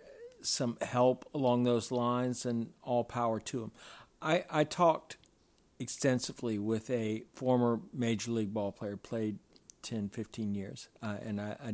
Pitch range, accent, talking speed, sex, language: 115-135 Hz, American, 150 wpm, male, English